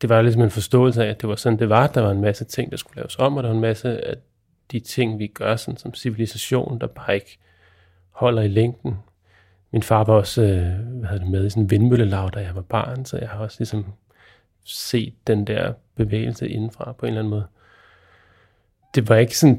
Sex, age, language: male, 30-49, Danish